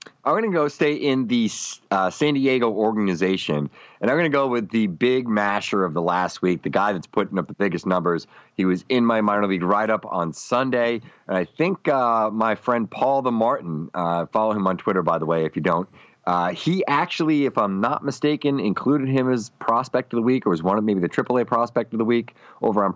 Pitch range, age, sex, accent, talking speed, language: 90-120 Hz, 30-49, male, American, 230 wpm, English